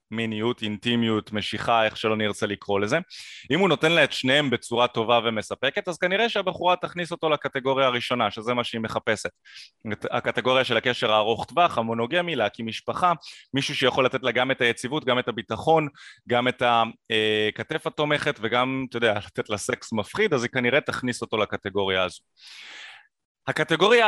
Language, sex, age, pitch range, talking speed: Hebrew, male, 30-49, 115-145 Hz, 160 wpm